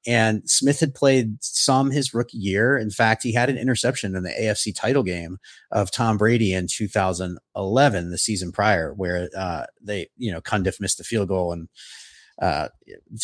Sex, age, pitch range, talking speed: male, 30-49, 100-135 Hz, 175 wpm